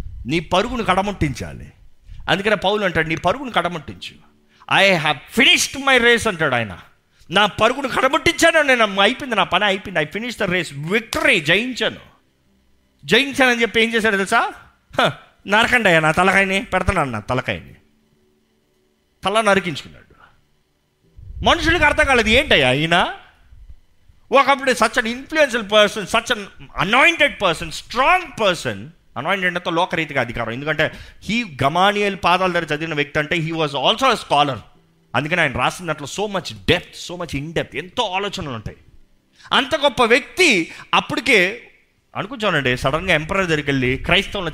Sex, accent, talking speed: male, native, 130 wpm